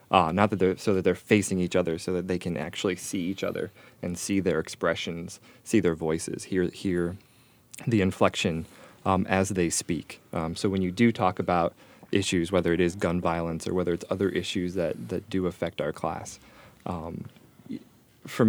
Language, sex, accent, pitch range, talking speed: English, male, American, 90-100 Hz, 190 wpm